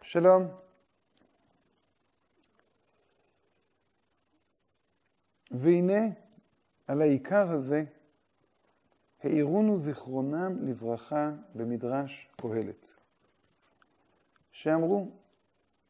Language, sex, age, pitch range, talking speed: Hebrew, male, 50-69, 110-155 Hz, 40 wpm